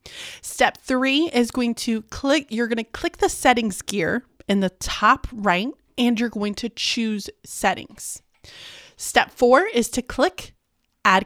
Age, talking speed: 30-49, 155 wpm